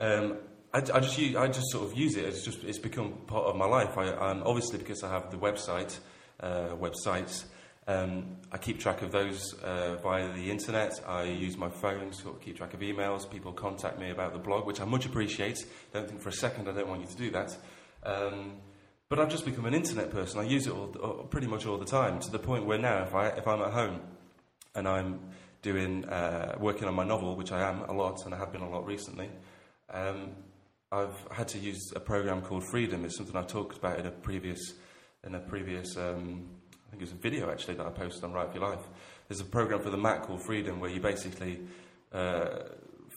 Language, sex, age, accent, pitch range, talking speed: English, male, 30-49, British, 90-110 Hz, 230 wpm